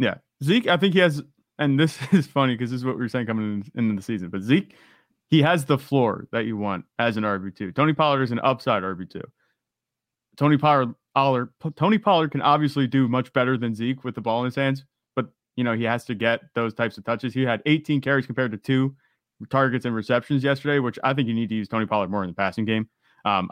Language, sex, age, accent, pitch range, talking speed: English, male, 30-49, American, 115-145 Hz, 235 wpm